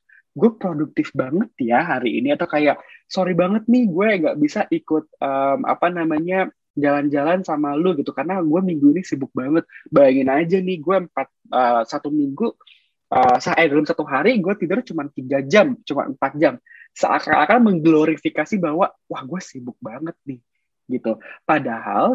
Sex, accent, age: male, native, 20-39